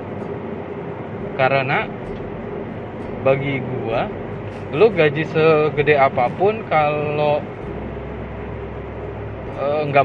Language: Indonesian